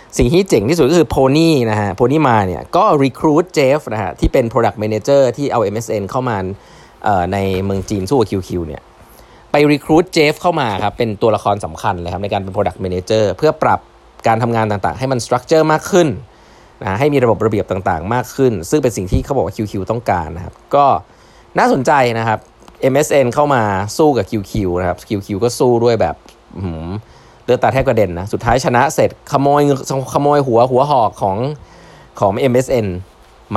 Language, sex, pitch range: Thai, male, 95-130 Hz